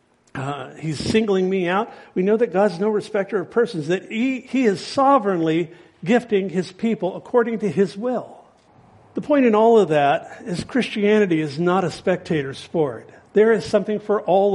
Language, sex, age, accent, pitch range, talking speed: English, male, 50-69, American, 160-200 Hz, 175 wpm